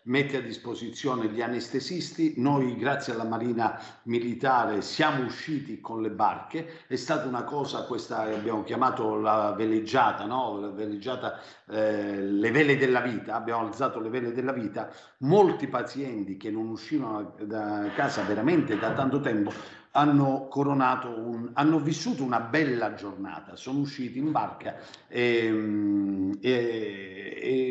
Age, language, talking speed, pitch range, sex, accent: 50-69, Italian, 140 wpm, 110-135 Hz, male, native